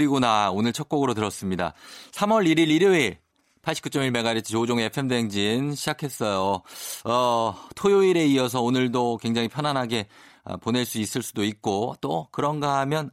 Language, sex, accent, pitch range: Korean, male, native, 105-145 Hz